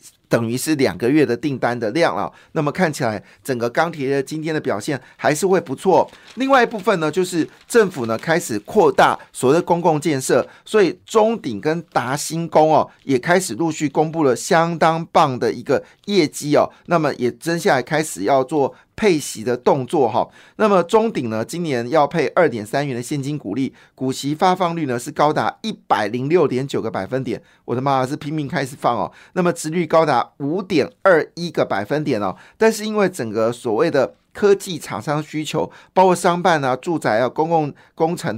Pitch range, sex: 135-180 Hz, male